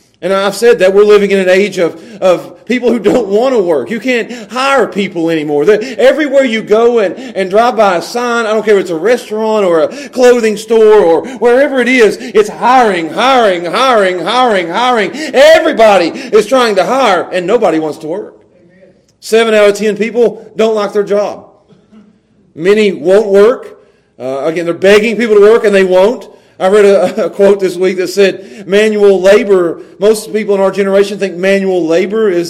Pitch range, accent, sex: 190-235 Hz, American, male